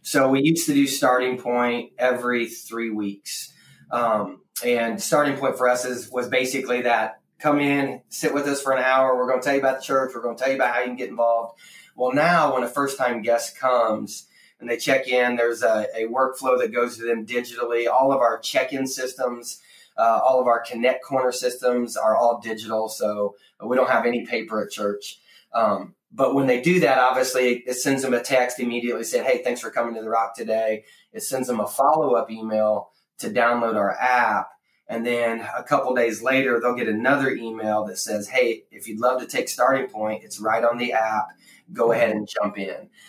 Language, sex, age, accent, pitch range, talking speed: English, male, 30-49, American, 115-130 Hz, 215 wpm